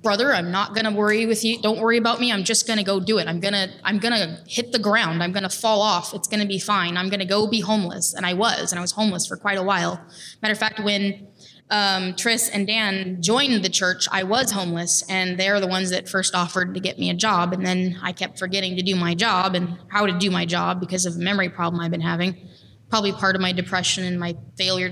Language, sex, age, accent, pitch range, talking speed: English, female, 20-39, American, 175-210 Hz, 270 wpm